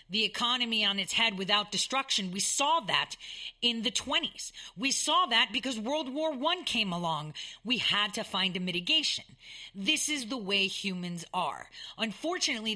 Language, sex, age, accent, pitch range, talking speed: English, female, 40-59, American, 190-255 Hz, 165 wpm